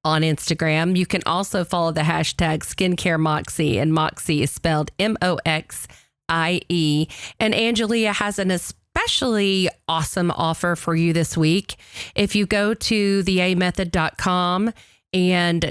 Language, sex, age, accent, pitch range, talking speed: English, female, 40-59, American, 155-185 Hz, 120 wpm